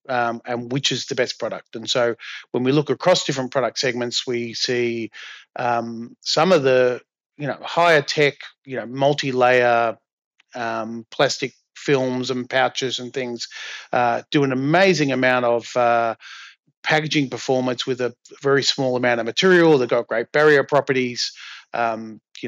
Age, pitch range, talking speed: 30-49, 120-140 Hz, 155 wpm